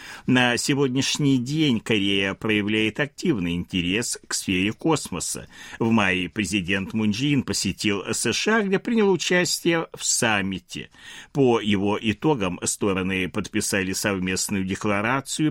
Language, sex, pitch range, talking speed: Russian, male, 95-130 Hz, 110 wpm